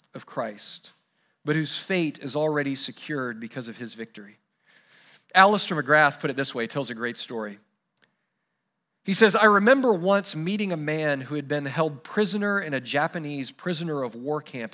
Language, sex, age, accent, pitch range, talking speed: English, male, 40-59, American, 145-195 Hz, 170 wpm